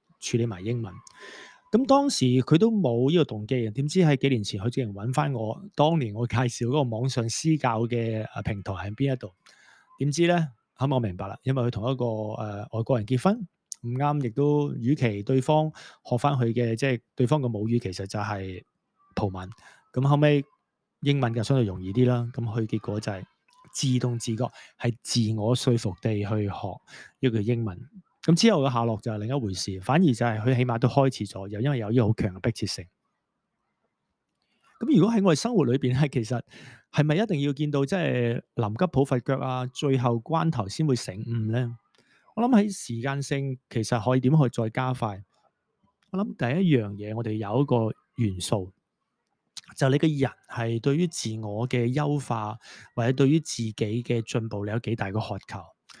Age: 30-49